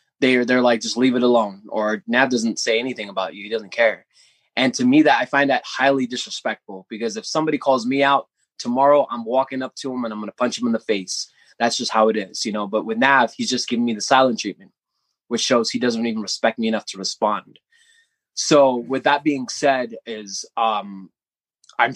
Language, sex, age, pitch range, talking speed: English, male, 20-39, 115-150 Hz, 225 wpm